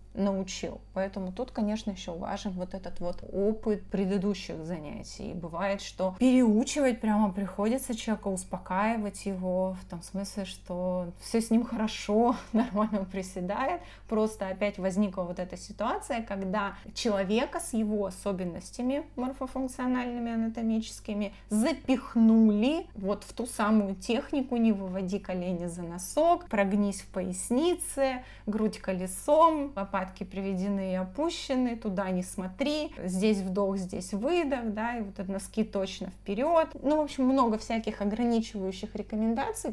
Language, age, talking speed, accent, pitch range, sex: Russian, 20-39, 125 wpm, native, 190-235 Hz, female